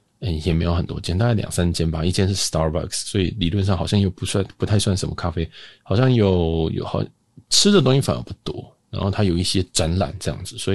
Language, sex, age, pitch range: Chinese, male, 20-39, 85-105 Hz